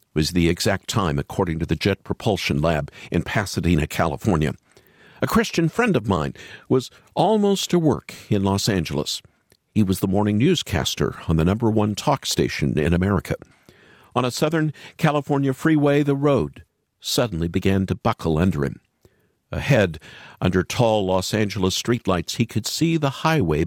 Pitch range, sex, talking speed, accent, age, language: 95-150 Hz, male, 155 wpm, American, 50-69, English